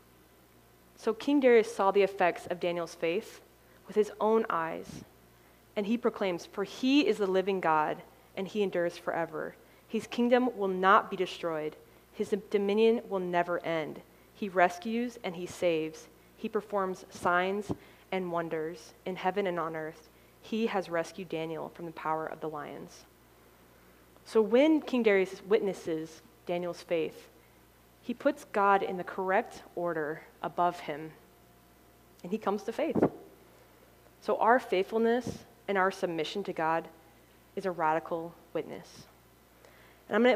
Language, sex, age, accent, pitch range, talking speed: English, female, 20-39, American, 160-205 Hz, 145 wpm